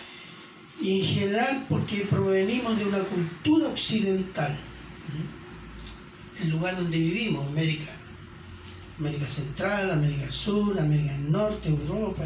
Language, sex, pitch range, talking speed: Spanish, male, 155-195 Hz, 105 wpm